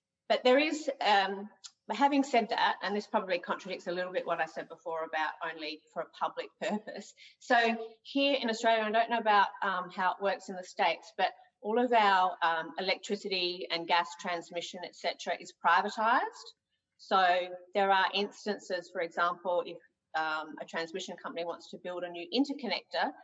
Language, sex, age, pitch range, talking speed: English, female, 40-59, 170-215 Hz, 180 wpm